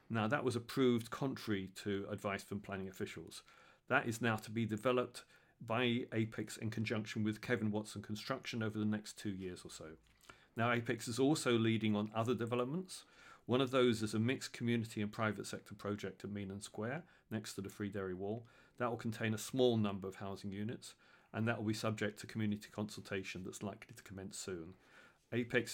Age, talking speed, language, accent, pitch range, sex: 40-59, 190 wpm, English, British, 105-125 Hz, male